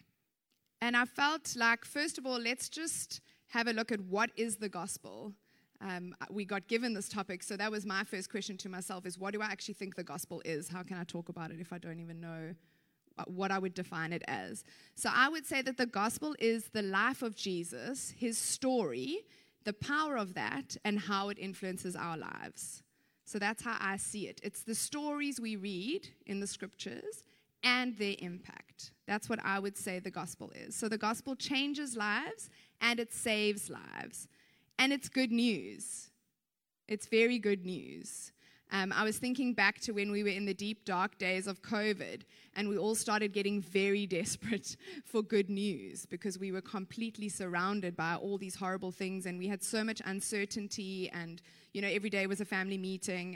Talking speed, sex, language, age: 195 wpm, female, English, 20-39